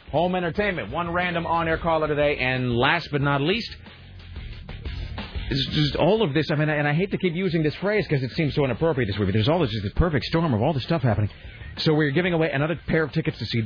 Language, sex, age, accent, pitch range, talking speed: English, male, 40-59, American, 105-160 Hz, 240 wpm